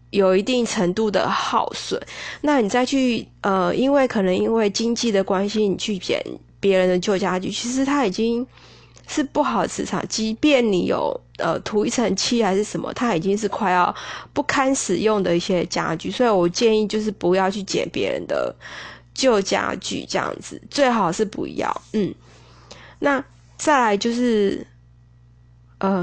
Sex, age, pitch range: female, 20-39, 185-240 Hz